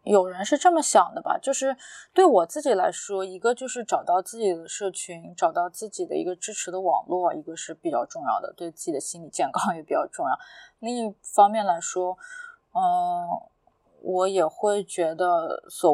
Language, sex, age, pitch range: Chinese, female, 20-39, 175-285 Hz